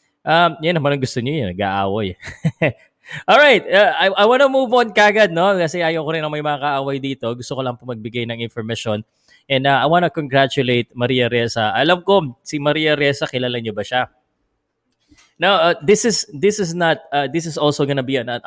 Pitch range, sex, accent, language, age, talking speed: 110-140 Hz, male, native, Filipino, 20-39, 200 wpm